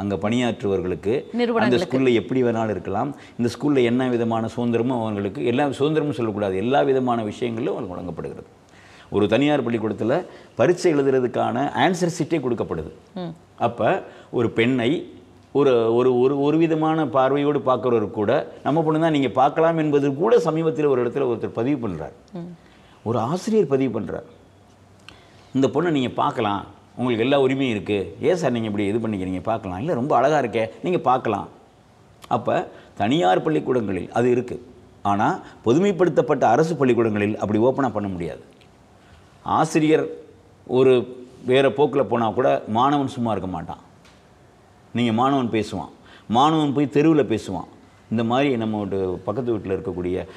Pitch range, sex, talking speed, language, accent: 105-140 Hz, male, 135 wpm, Tamil, native